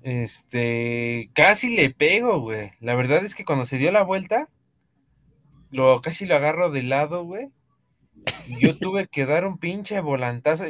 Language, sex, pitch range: Spanish, male, 130-180 Hz